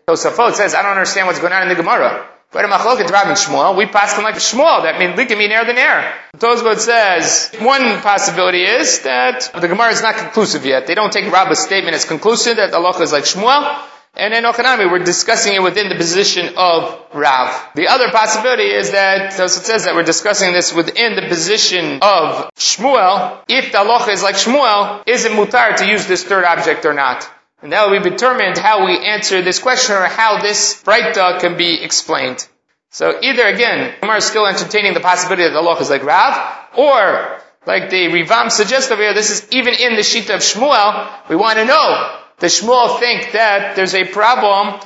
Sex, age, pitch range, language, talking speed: male, 30-49, 185-230 Hz, English, 205 wpm